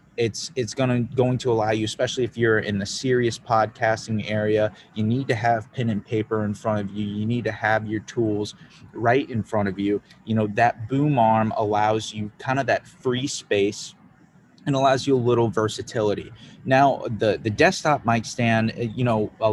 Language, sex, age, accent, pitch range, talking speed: English, male, 30-49, American, 105-120 Hz, 195 wpm